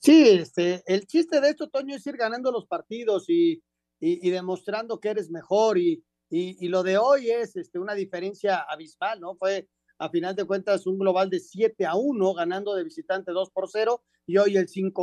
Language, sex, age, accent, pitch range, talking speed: Spanish, male, 40-59, Mexican, 185-260 Hz, 210 wpm